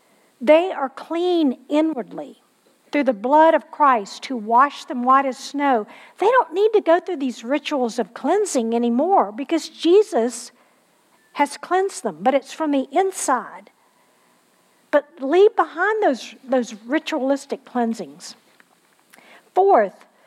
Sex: female